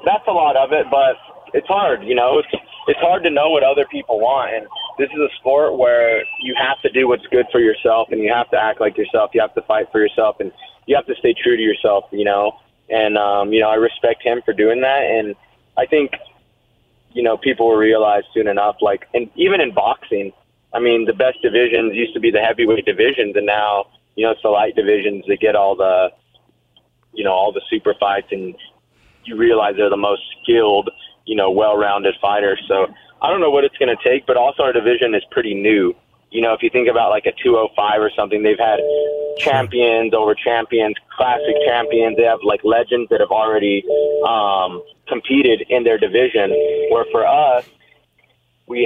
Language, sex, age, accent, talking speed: English, male, 20-39, American, 210 wpm